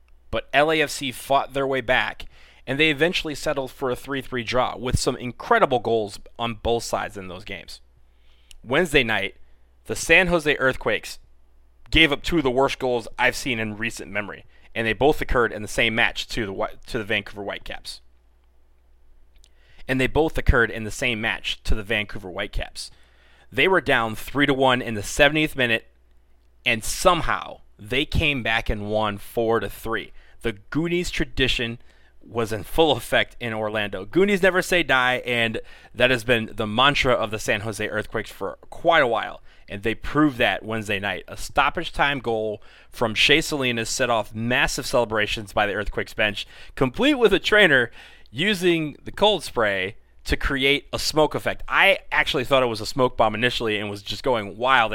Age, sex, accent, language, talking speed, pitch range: 20-39, male, American, English, 175 wpm, 100-130 Hz